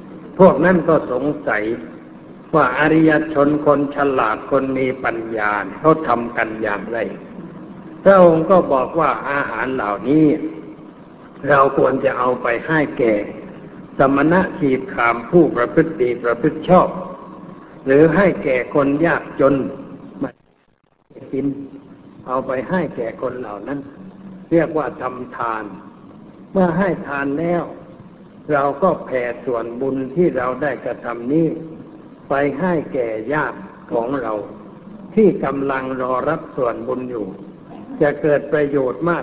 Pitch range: 125-165 Hz